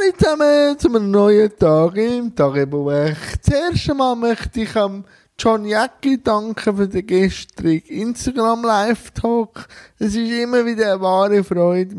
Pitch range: 175-230 Hz